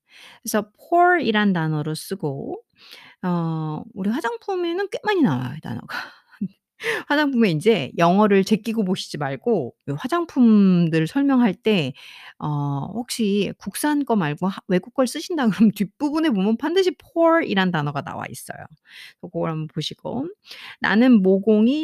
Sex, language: female, Korean